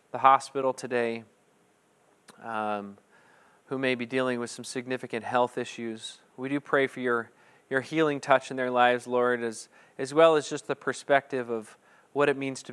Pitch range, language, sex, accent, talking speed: 115-135 Hz, English, male, American, 170 wpm